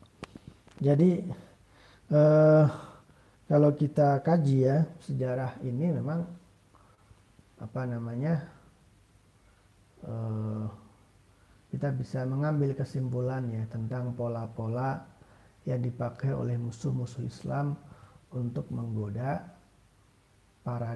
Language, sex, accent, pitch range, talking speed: Indonesian, male, native, 105-145 Hz, 75 wpm